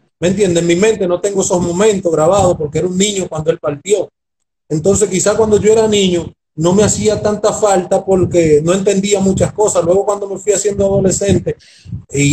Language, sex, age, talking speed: English, male, 30-49, 195 wpm